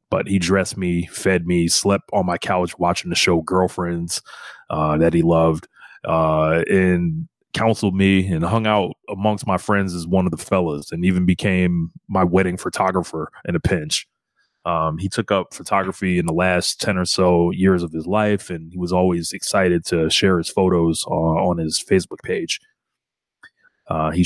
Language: English